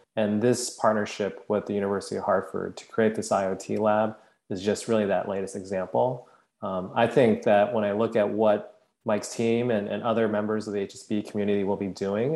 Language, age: English, 20-39